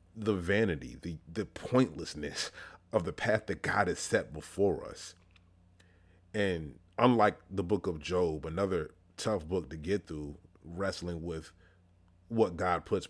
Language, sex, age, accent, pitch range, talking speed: English, male, 30-49, American, 90-100 Hz, 140 wpm